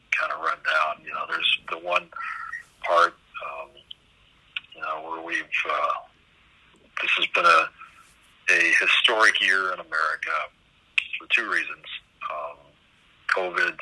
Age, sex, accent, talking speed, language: 60-79, male, American, 130 wpm, English